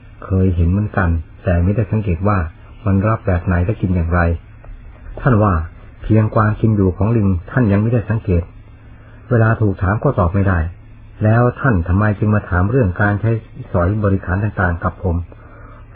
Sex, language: male, Thai